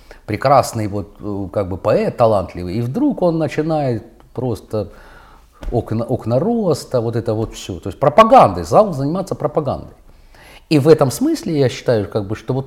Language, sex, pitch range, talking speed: Russian, male, 110-155 Hz, 135 wpm